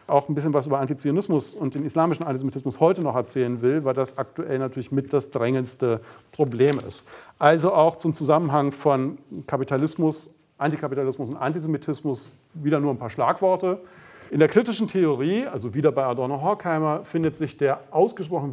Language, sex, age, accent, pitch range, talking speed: German, male, 40-59, German, 130-160 Hz, 160 wpm